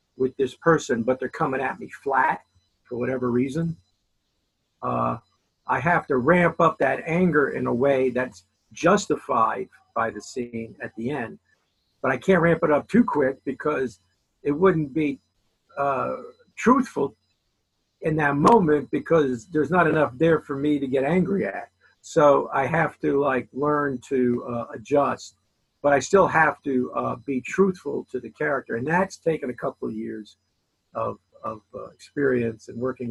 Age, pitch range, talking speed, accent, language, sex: 50-69, 120-155 Hz, 165 wpm, American, English, male